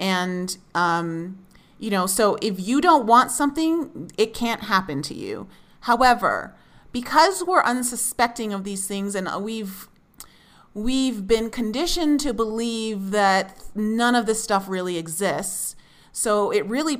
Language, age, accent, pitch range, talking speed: English, 30-49, American, 180-235 Hz, 140 wpm